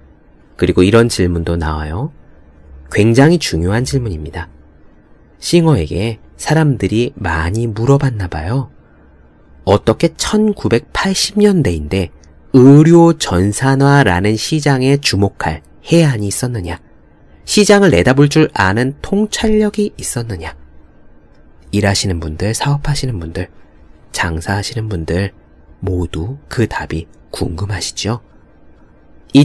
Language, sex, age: Korean, male, 30-49